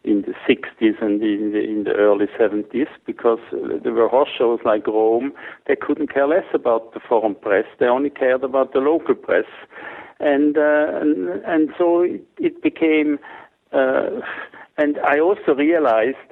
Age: 60-79